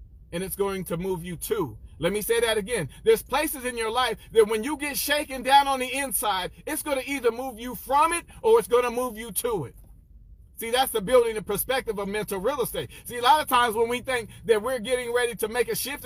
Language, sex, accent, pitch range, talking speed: English, male, American, 185-280 Hz, 255 wpm